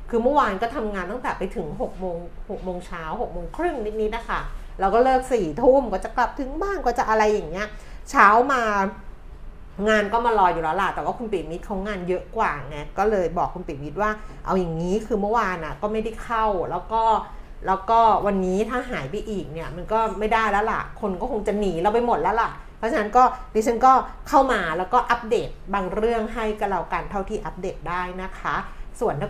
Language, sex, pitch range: Thai, female, 185-235 Hz